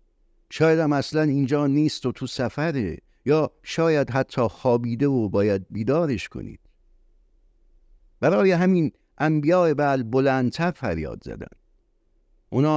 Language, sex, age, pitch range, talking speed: Persian, male, 50-69, 110-150 Hz, 110 wpm